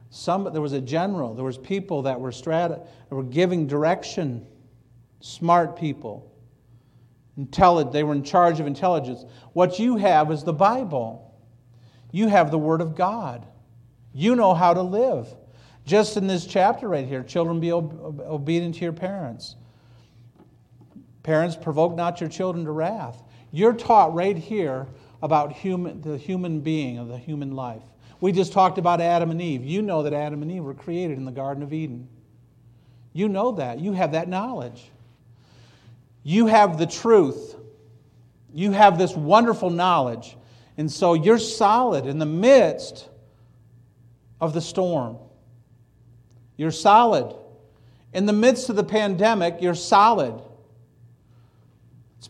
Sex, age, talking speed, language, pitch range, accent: male, 50-69, 150 wpm, English, 120-175 Hz, American